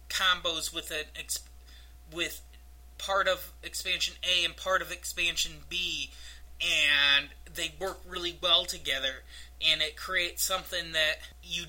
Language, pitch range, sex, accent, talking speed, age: English, 135-185 Hz, male, American, 135 wpm, 20-39